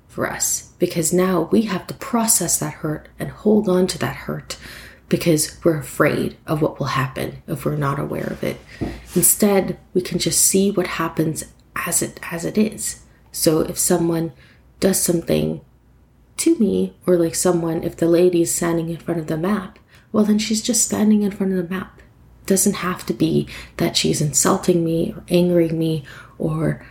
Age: 30-49